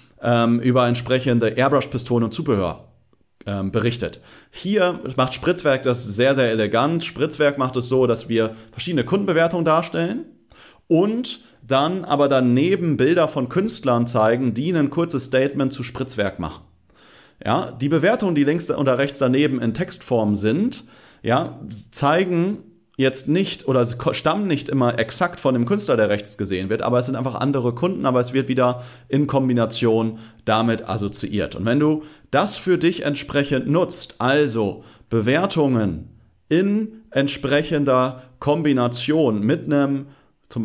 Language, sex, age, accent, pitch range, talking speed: German, male, 40-59, German, 115-155 Hz, 140 wpm